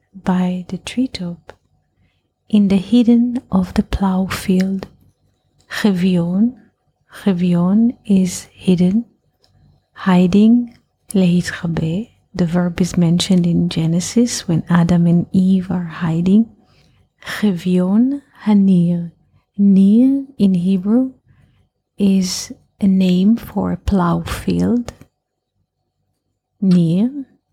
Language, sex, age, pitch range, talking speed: English, female, 30-49, 175-210 Hz, 90 wpm